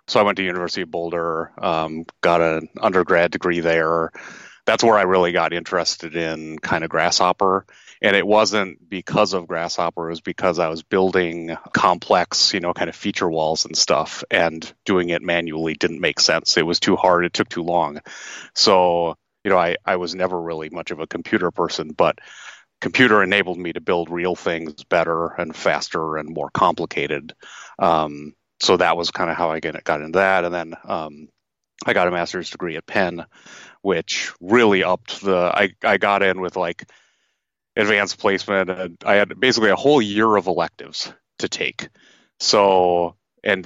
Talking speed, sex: 185 wpm, male